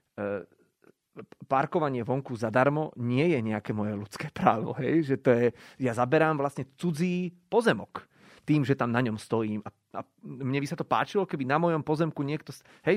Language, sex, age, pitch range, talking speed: Slovak, male, 30-49, 120-160 Hz, 170 wpm